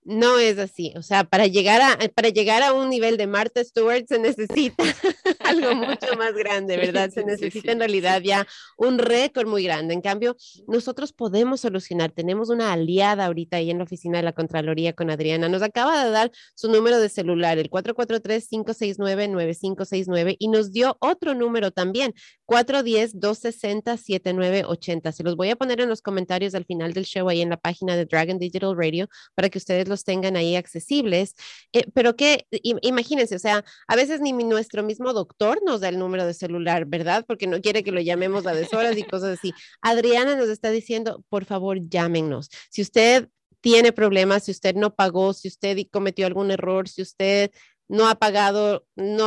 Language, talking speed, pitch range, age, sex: Spanish, 185 wpm, 185-230 Hz, 30-49, female